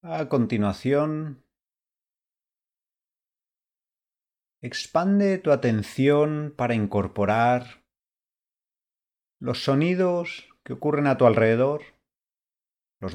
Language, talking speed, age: Spanish, 70 wpm, 30-49